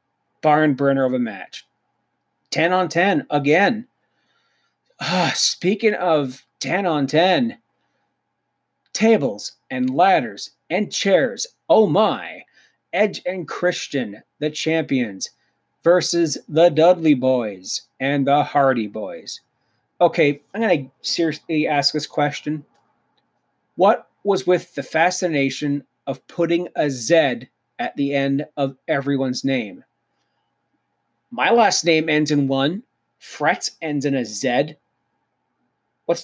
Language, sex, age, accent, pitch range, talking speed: English, male, 30-49, American, 135-170 Hz, 115 wpm